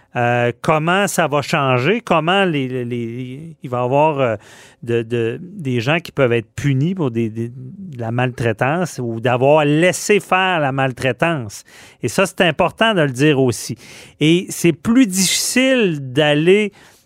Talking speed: 135 wpm